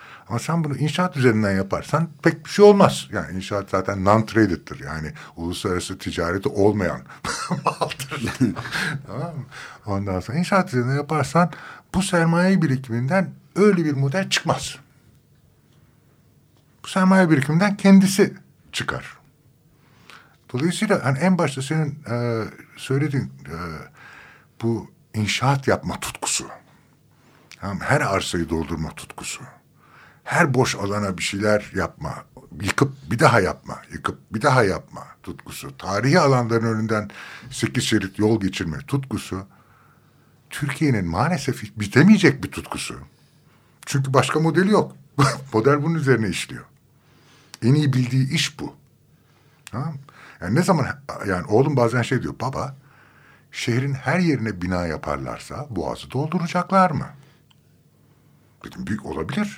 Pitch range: 110-155 Hz